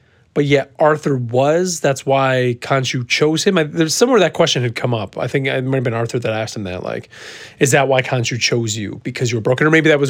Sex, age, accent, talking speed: male, 30-49, American, 255 wpm